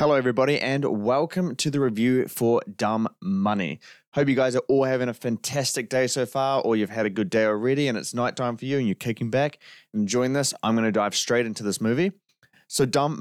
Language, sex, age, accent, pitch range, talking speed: English, male, 20-39, Australian, 110-135 Hz, 225 wpm